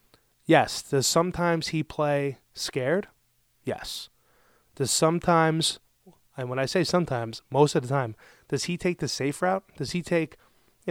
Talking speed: 155 wpm